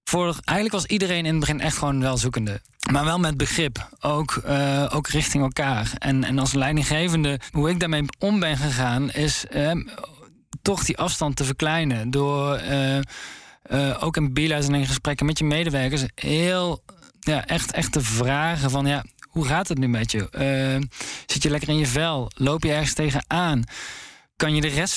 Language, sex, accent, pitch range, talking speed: Dutch, male, Dutch, 135-155 Hz, 185 wpm